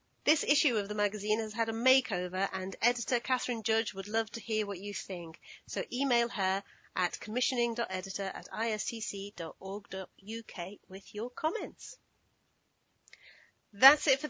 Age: 40-59